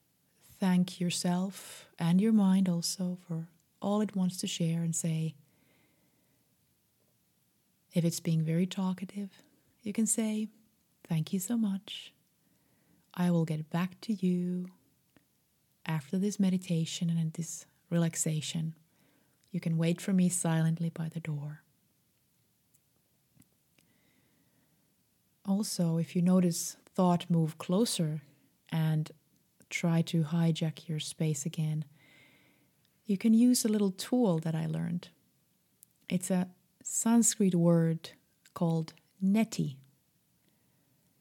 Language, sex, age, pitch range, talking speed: English, female, 30-49, 165-190 Hz, 110 wpm